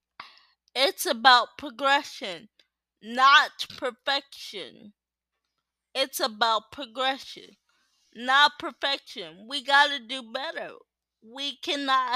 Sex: female